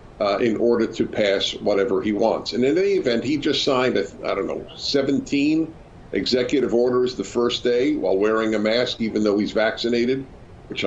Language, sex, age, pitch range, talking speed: English, male, 50-69, 105-135 Hz, 195 wpm